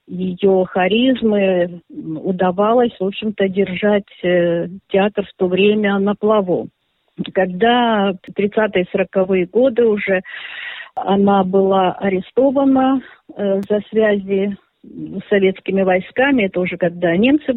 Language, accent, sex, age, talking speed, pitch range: Russian, native, female, 50-69, 105 wpm, 190-230 Hz